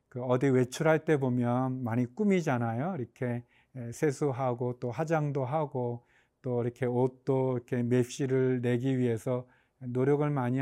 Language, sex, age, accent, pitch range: Korean, male, 40-59, native, 125-155 Hz